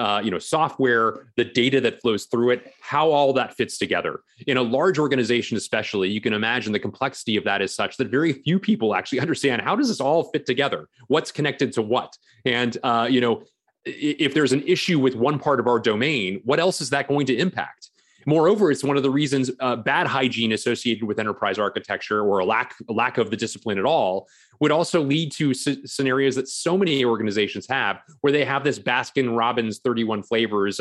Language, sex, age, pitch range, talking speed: English, male, 30-49, 120-145 Hz, 210 wpm